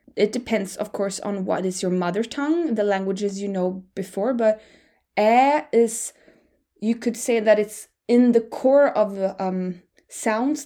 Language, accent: English, Norwegian